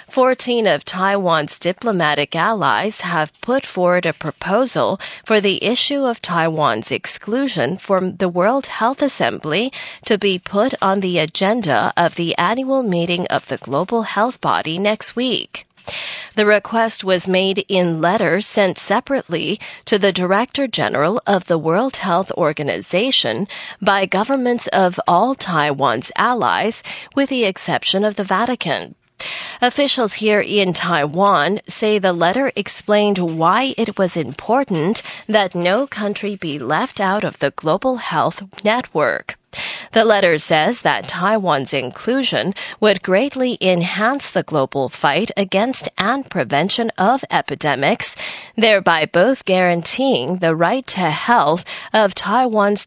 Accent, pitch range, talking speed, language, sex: American, 175-230 Hz, 130 wpm, English, female